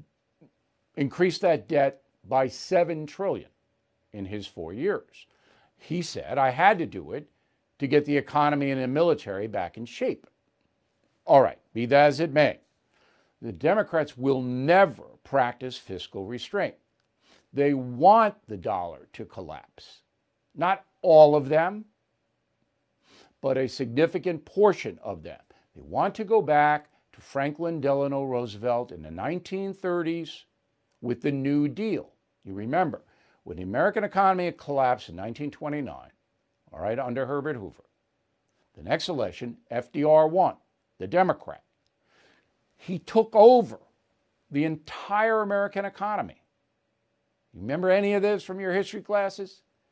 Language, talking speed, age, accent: English, 135 wpm, 60-79, American